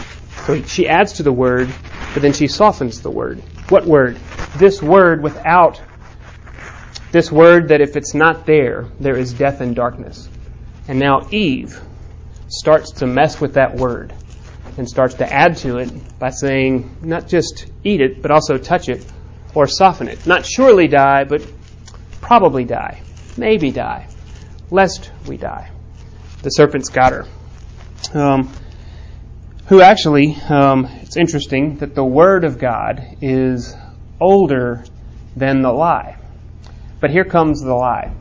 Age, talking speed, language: 30-49, 145 wpm, English